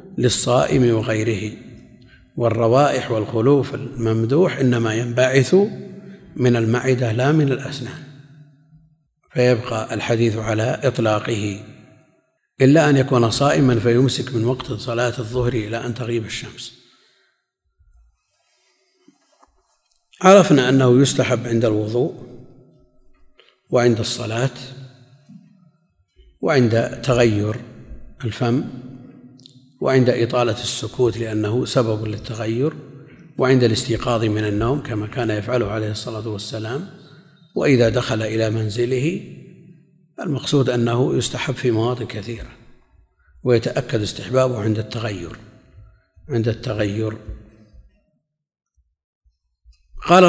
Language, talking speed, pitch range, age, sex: Arabic, 85 wpm, 110-135 Hz, 50-69, male